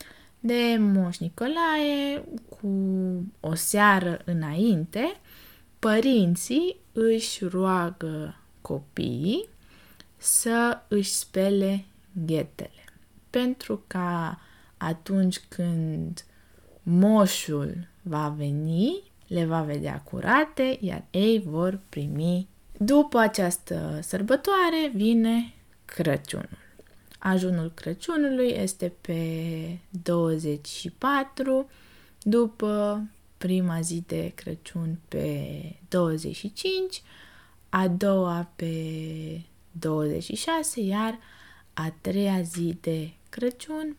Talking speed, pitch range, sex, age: 80 wpm, 170-230 Hz, female, 20-39